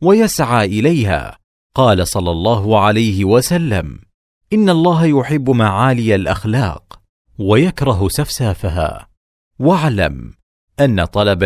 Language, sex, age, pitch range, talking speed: Arabic, male, 40-59, 100-140 Hz, 90 wpm